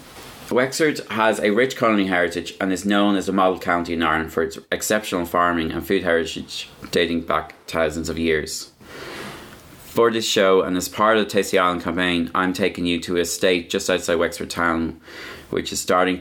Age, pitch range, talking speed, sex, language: 20-39, 85-95 Hz, 190 wpm, male, English